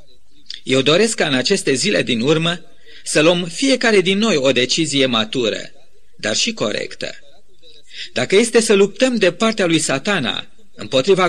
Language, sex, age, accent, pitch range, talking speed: Romanian, male, 40-59, native, 155-220 Hz, 150 wpm